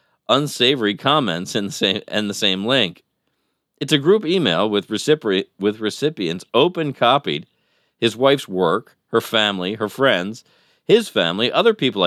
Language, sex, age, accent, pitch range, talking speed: English, male, 40-59, American, 100-145 Hz, 120 wpm